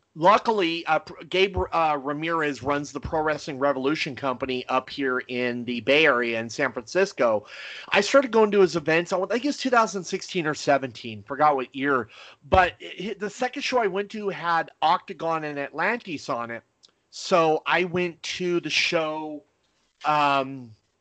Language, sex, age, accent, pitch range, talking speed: English, male, 30-49, American, 135-170 Hz, 155 wpm